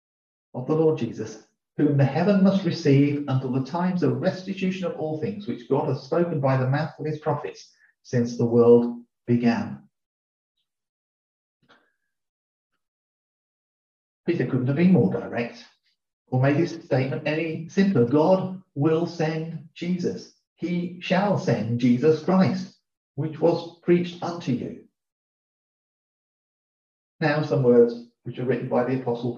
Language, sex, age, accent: English, male, 50-69, British